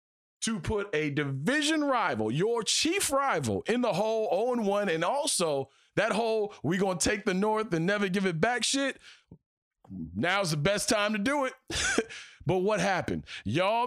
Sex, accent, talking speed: male, American, 170 wpm